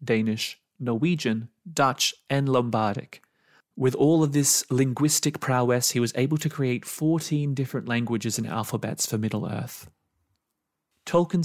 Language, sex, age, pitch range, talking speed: English, male, 30-49, 115-145 Hz, 130 wpm